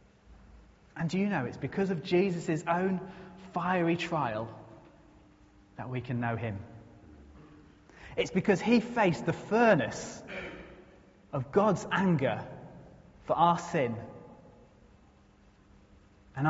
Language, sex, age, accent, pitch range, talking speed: English, male, 30-49, British, 120-180 Hz, 105 wpm